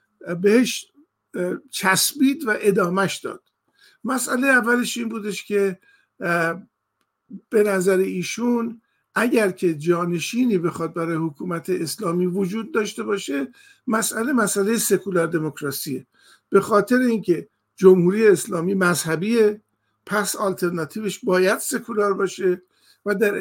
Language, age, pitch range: Persian, 50-69, 175-225 Hz